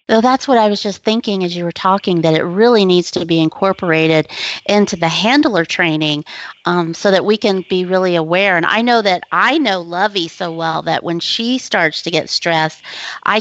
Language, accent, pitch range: English, American, 175-225 Hz